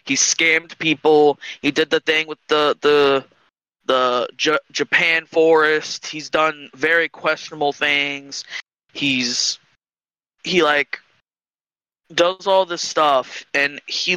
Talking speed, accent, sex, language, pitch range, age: 120 wpm, American, male, English, 140-155 Hz, 20-39